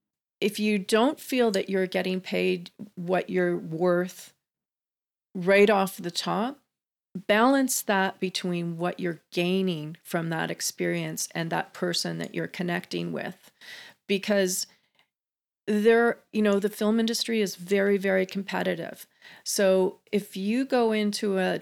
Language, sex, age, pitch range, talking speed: English, female, 40-59, 175-205 Hz, 135 wpm